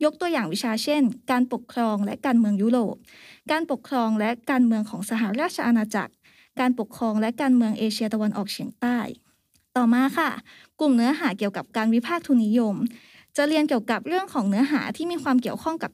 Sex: female